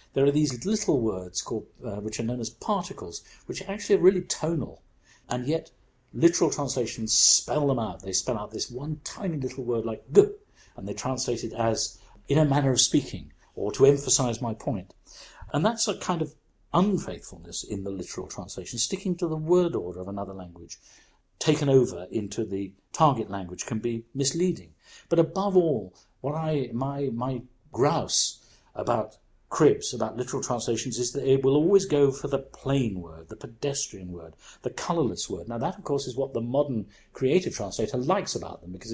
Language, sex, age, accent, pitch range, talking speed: English, male, 50-69, British, 115-150 Hz, 185 wpm